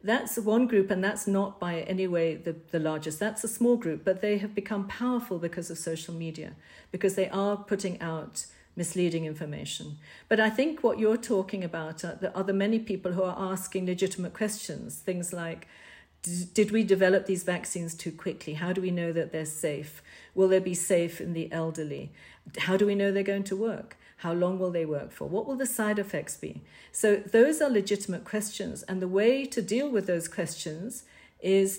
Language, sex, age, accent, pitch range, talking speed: English, female, 50-69, British, 175-210 Hz, 200 wpm